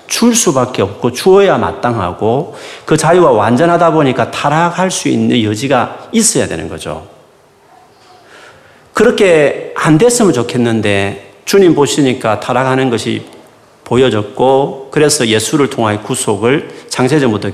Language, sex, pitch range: Korean, male, 110-155 Hz